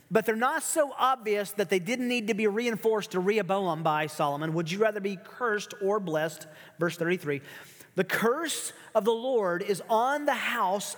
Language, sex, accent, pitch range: English, male, American, 165-220 Hz